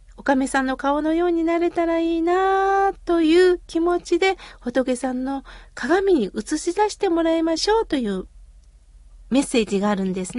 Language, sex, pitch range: Japanese, female, 260-345 Hz